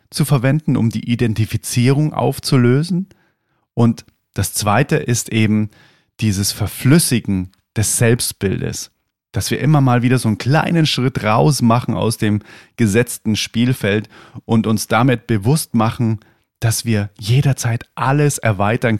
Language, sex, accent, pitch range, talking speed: German, male, German, 105-130 Hz, 125 wpm